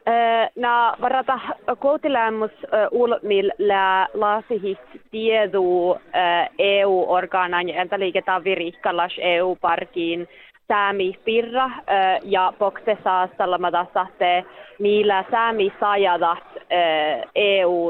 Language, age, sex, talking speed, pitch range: Finnish, 30-49, female, 85 wpm, 180-205 Hz